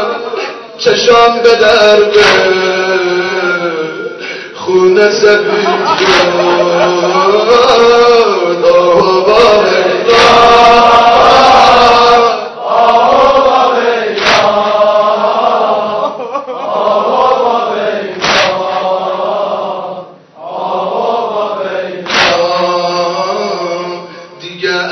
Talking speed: 30 wpm